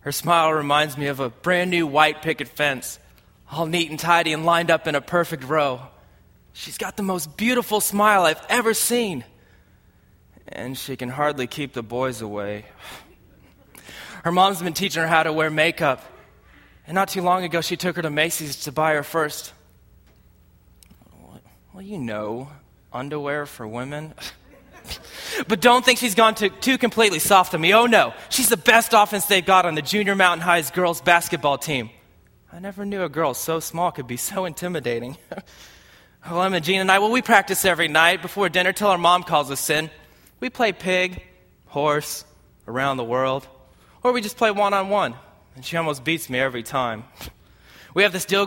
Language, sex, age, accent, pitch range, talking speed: English, male, 20-39, American, 140-190 Hz, 180 wpm